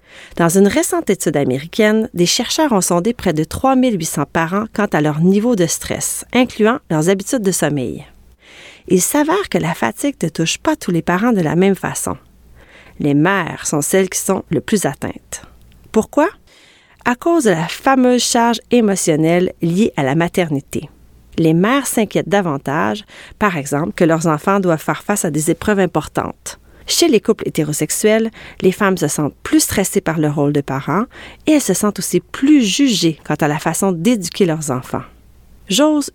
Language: French